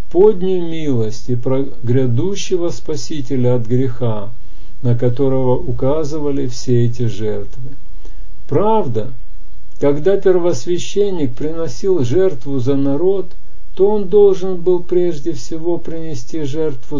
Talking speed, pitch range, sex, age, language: 95 wpm, 120-170 Hz, male, 50-69, Russian